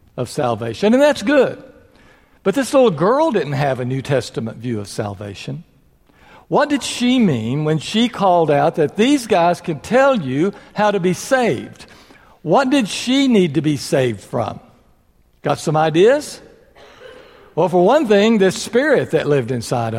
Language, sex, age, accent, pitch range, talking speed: English, male, 60-79, American, 145-220 Hz, 165 wpm